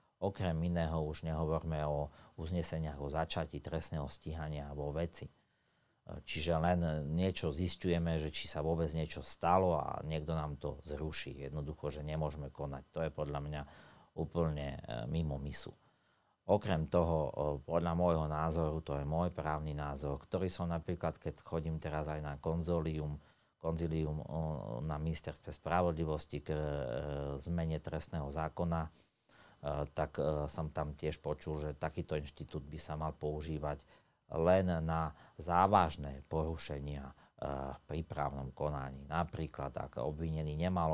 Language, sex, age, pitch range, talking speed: Slovak, male, 40-59, 75-85 Hz, 135 wpm